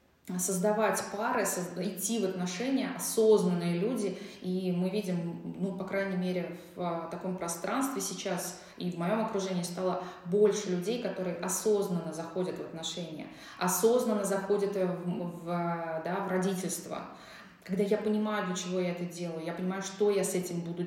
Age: 20-39